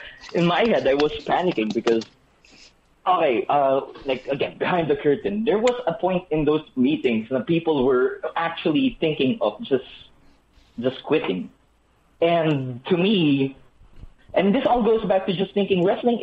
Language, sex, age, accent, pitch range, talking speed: English, male, 20-39, Filipino, 135-195 Hz, 155 wpm